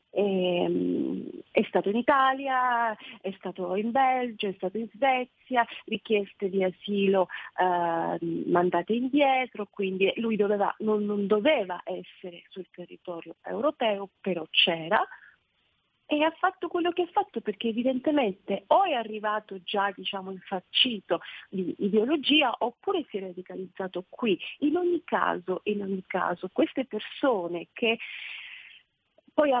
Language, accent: Italian, native